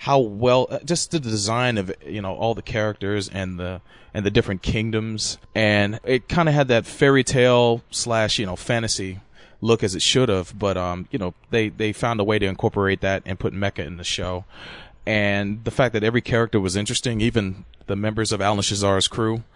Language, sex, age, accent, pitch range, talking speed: English, male, 30-49, American, 100-115 Hz, 205 wpm